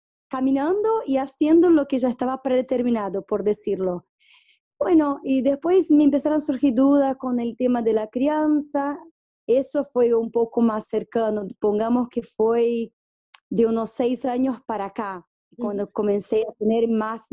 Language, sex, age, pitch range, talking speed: Spanish, female, 20-39, 210-260 Hz, 150 wpm